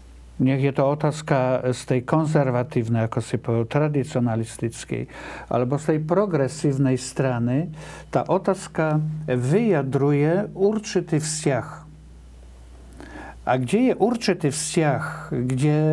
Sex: male